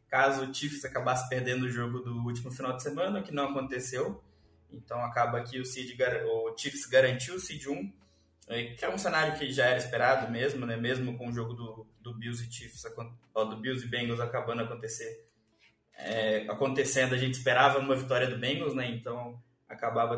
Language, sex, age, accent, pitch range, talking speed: Portuguese, male, 20-39, Brazilian, 120-150 Hz, 180 wpm